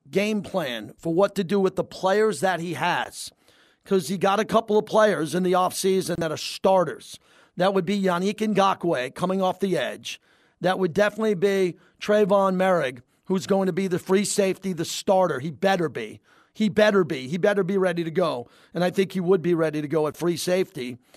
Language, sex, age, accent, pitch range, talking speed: English, male, 40-59, American, 180-205 Hz, 205 wpm